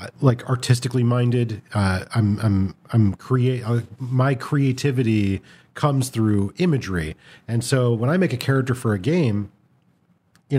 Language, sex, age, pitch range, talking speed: English, male, 40-59, 110-140 Hz, 140 wpm